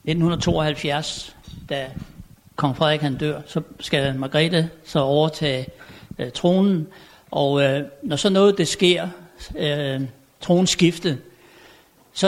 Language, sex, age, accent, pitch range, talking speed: Danish, male, 60-79, native, 140-180 Hz, 115 wpm